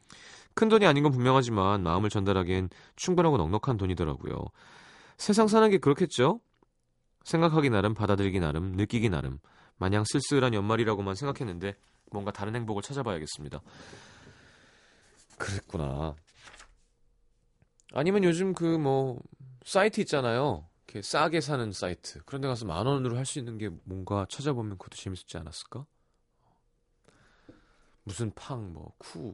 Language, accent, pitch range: Korean, native, 85-130 Hz